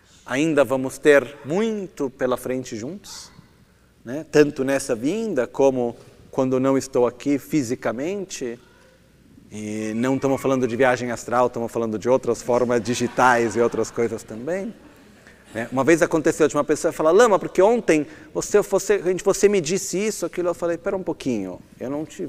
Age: 40-59